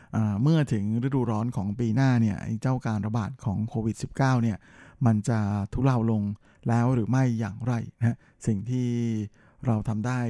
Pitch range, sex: 115-140 Hz, male